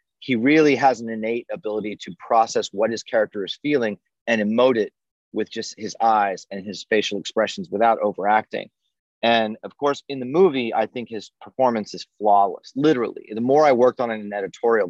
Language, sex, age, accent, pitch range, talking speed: English, male, 30-49, American, 105-140 Hz, 185 wpm